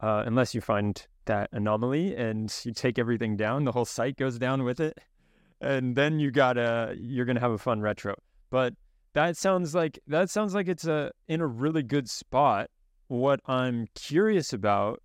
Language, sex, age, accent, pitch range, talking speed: English, male, 20-39, American, 110-140 Hz, 185 wpm